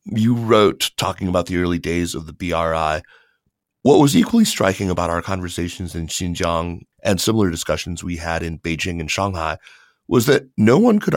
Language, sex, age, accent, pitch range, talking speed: English, male, 30-49, American, 85-100 Hz, 175 wpm